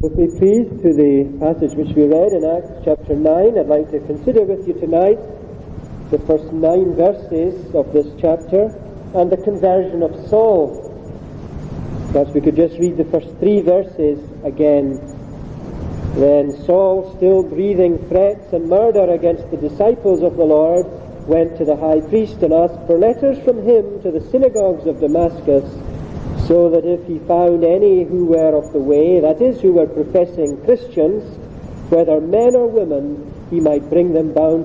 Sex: male